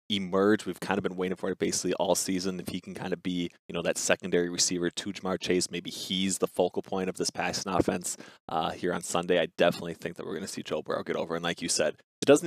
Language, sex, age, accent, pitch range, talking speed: English, male, 20-39, American, 90-105 Hz, 270 wpm